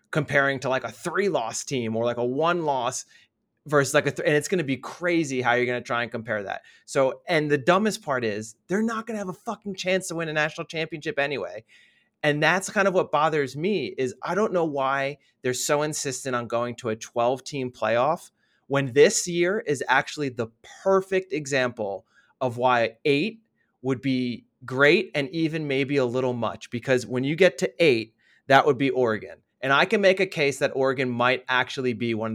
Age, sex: 30-49, male